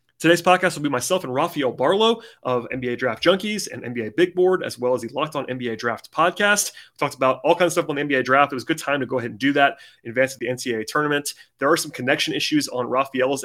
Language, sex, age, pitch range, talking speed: English, male, 30-49, 125-160 Hz, 270 wpm